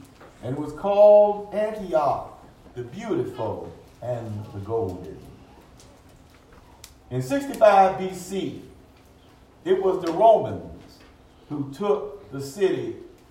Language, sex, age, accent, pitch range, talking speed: English, male, 50-69, American, 140-205 Hz, 95 wpm